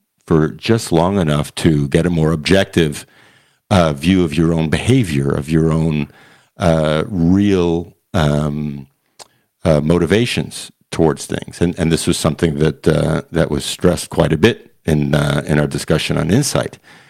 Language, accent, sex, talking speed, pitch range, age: English, American, male, 160 wpm, 75-85 Hz, 50-69